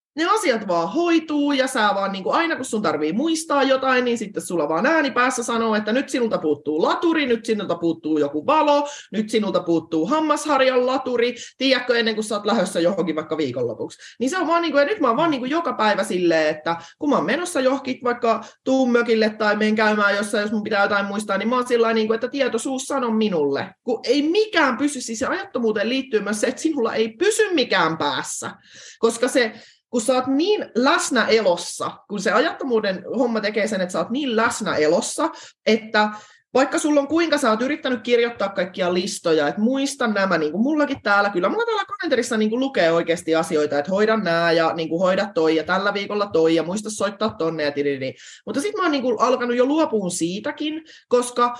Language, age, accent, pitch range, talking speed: Finnish, 30-49, native, 195-270 Hz, 205 wpm